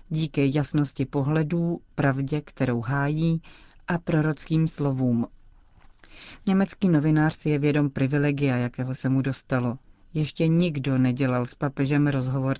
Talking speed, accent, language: 120 wpm, native, Czech